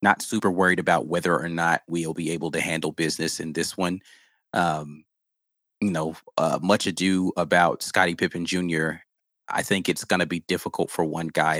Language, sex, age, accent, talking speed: English, male, 30-49, American, 185 wpm